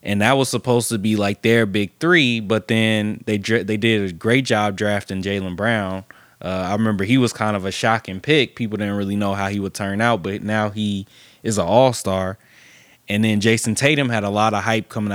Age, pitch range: 20-39, 105-120 Hz